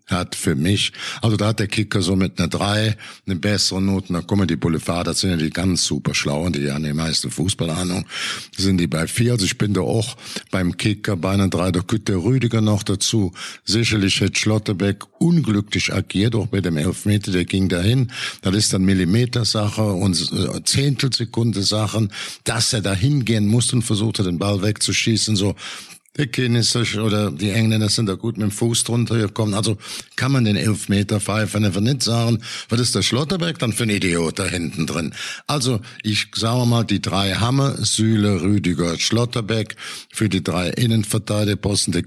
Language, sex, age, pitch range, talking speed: German, male, 50-69, 95-120 Hz, 185 wpm